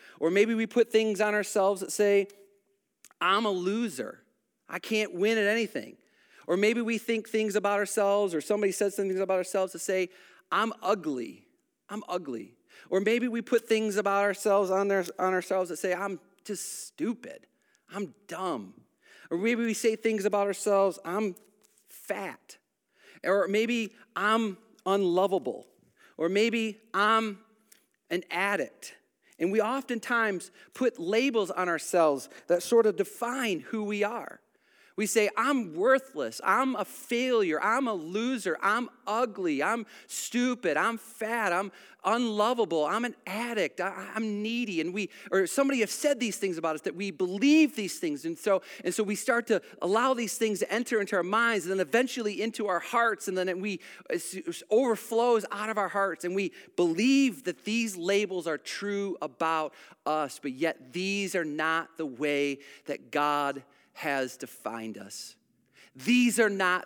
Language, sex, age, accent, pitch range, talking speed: English, male, 40-59, American, 185-225 Hz, 160 wpm